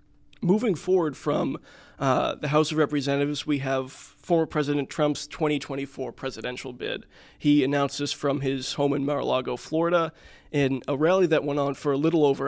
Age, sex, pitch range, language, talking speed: 20-39, male, 140-155 Hz, English, 170 wpm